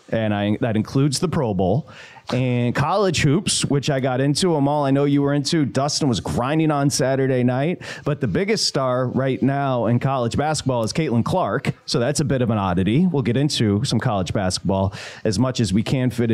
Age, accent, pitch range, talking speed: 30-49, American, 125-160 Hz, 215 wpm